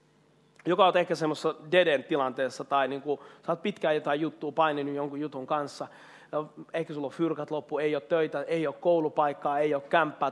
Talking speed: 180 wpm